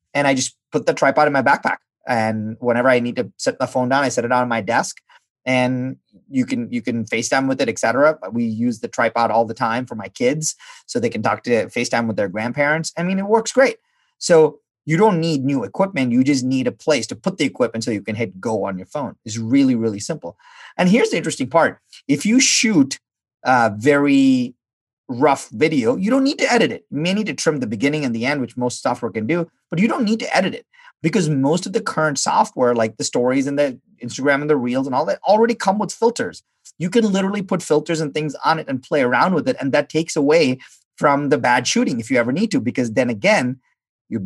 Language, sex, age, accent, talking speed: English, male, 30-49, American, 240 wpm